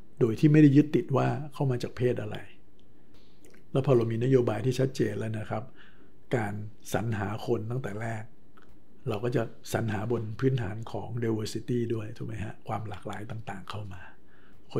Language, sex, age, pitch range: Thai, male, 60-79, 110-135 Hz